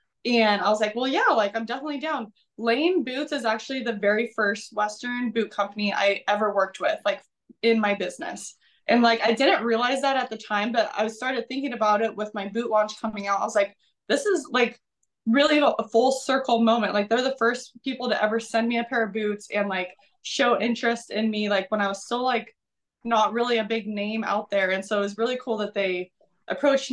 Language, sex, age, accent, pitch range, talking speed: English, female, 20-39, American, 205-235 Hz, 225 wpm